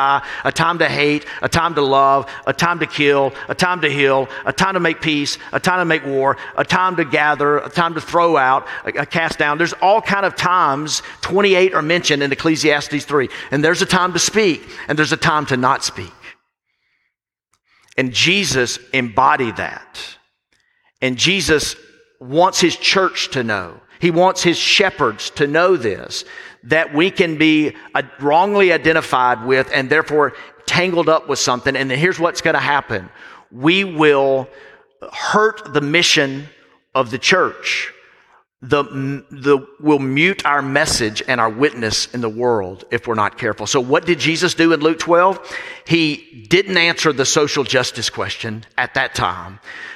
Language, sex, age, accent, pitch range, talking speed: English, male, 50-69, American, 135-170 Hz, 170 wpm